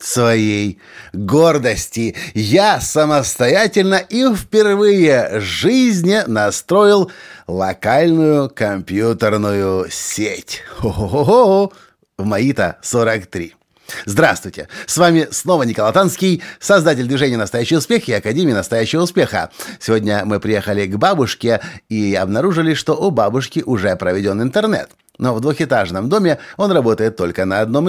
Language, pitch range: Russian, 105-165 Hz